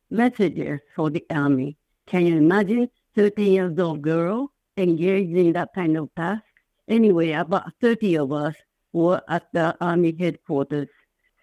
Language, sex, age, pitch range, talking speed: English, female, 60-79, 170-205 Hz, 140 wpm